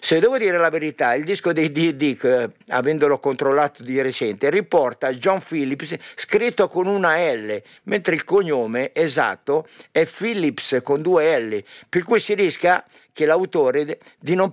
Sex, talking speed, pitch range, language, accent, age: male, 155 wpm, 140-190 Hz, Italian, native, 50-69